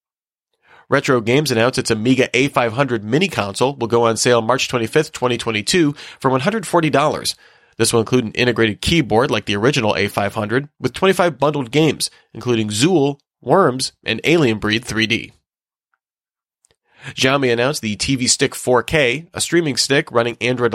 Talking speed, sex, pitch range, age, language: 140 wpm, male, 115-145 Hz, 30-49, English